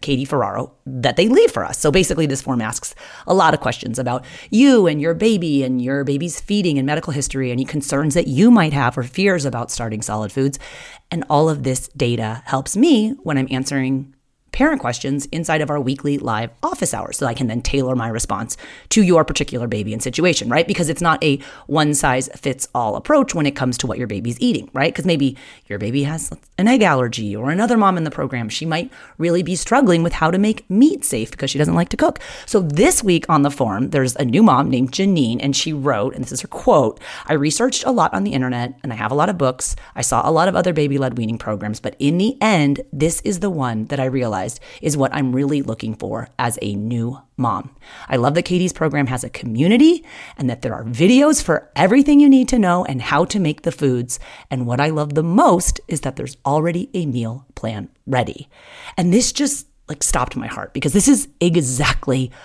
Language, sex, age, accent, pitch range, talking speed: English, female, 30-49, American, 130-175 Hz, 225 wpm